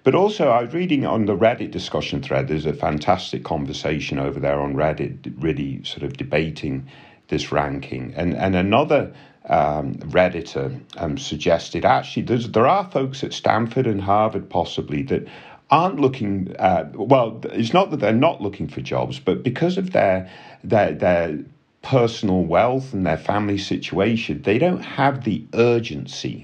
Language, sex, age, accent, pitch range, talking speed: English, male, 50-69, British, 75-120 Hz, 160 wpm